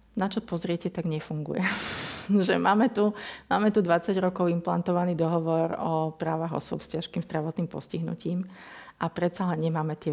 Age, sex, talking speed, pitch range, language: 40-59, female, 150 wpm, 160-185 Hz, Slovak